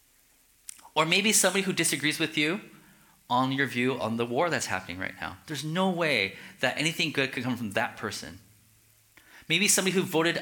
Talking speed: 185 wpm